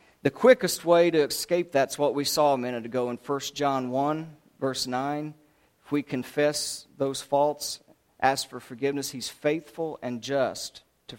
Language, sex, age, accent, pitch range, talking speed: English, male, 50-69, American, 125-150 Hz, 165 wpm